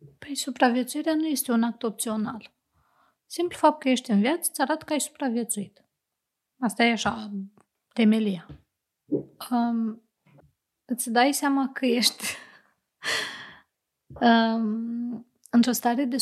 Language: Romanian